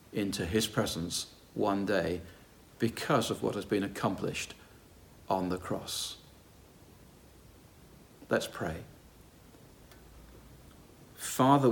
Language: English